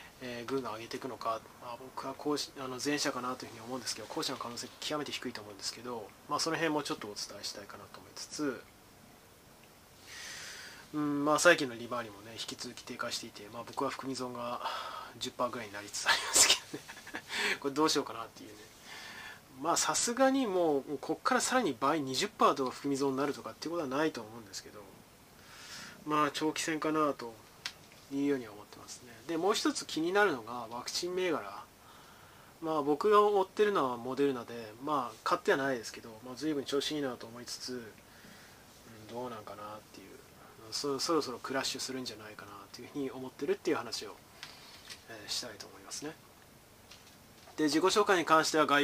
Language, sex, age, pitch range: Japanese, male, 20-39, 120-150 Hz